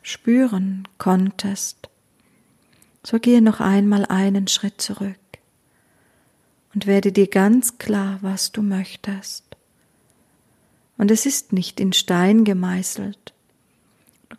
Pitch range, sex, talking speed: 190-215 Hz, female, 105 wpm